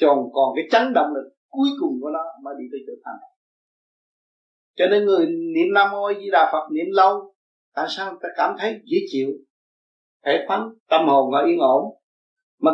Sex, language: male, Vietnamese